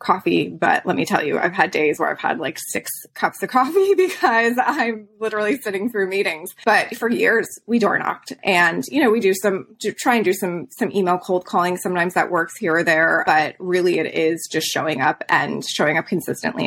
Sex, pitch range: female, 175-215 Hz